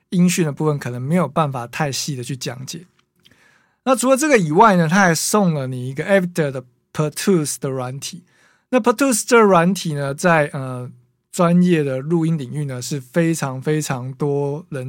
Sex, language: male, Chinese